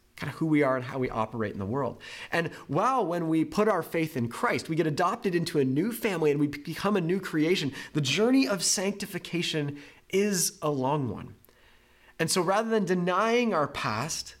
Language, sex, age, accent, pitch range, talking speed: English, male, 30-49, American, 125-170 Hz, 205 wpm